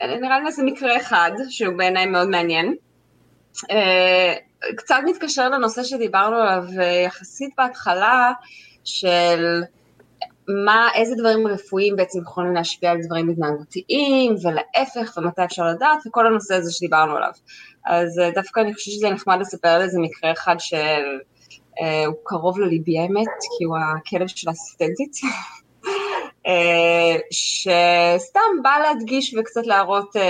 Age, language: 20-39, Hebrew